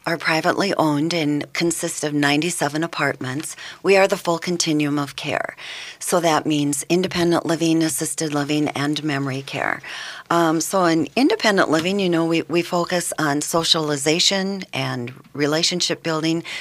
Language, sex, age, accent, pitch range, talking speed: English, female, 40-59, American, 145-170 Hz, 145 wpm